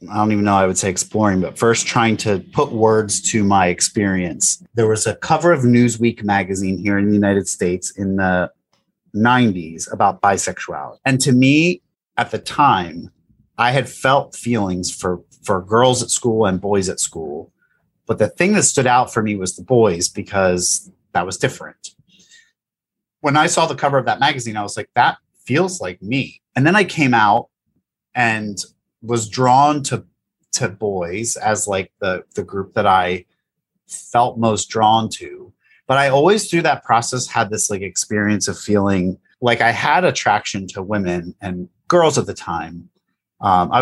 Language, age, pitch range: English, 30-49, 95-125 Hz